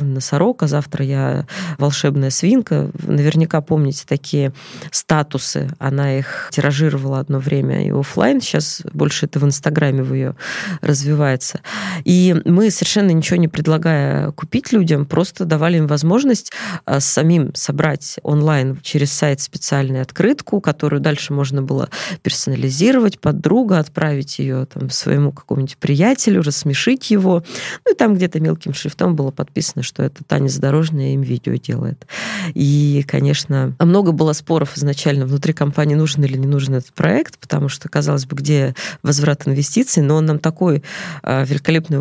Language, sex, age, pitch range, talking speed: Russian, female, 20-39, 140-170 Hz, 145 wpm